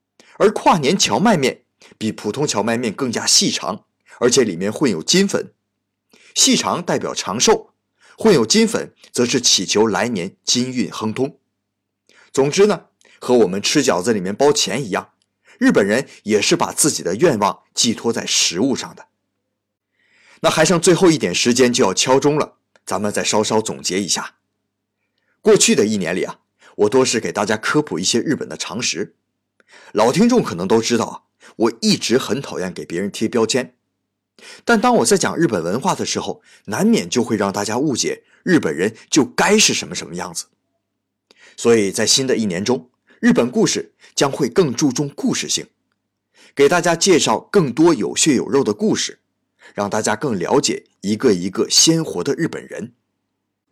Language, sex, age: Chinese, male, 30-49